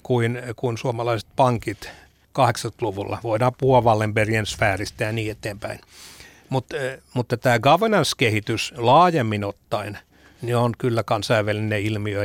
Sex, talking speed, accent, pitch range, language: male, 100 wpm, native, 110-135 Hz, Finnish